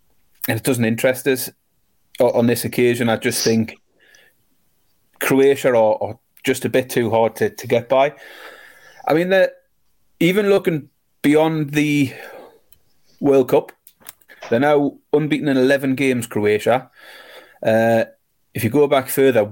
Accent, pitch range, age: British, 115-140 Hz, 30-49